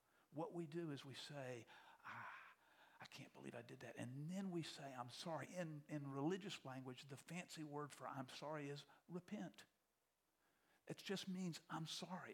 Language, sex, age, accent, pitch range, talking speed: English, male, 50-69, American, 140-180 Hz, 175 wpm